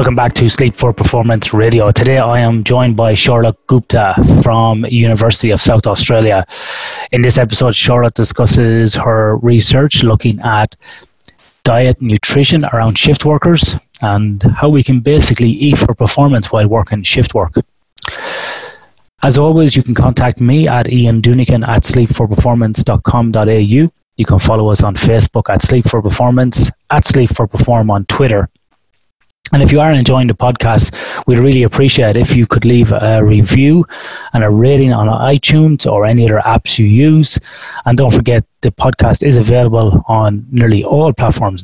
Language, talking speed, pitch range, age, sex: English, 160 wpm, 110-125 Hz, 30-49, male